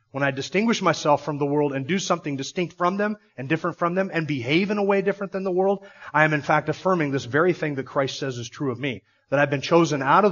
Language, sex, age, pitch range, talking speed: English, male, 30-49, 140-185 Hz, 275 wpm